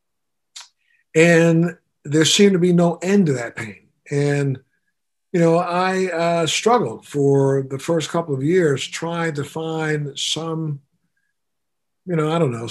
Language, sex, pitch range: English, male, 140-165 Hz